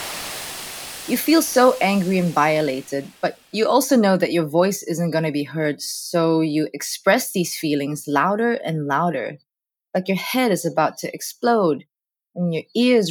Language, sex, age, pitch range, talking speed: English, female, 20-39, 150-200 Hz, 165 wpm